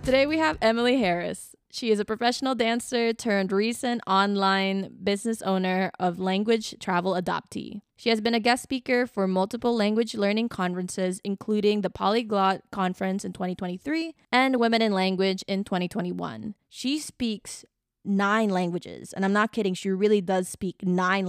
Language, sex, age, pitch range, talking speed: English, female, 20-39, 190-230 Hz, 155 wpm